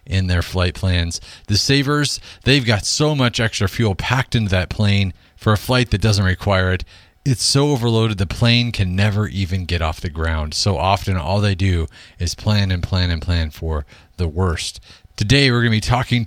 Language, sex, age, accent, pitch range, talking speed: English, male, 40-59, American, 85-115 Hz, 205 wpm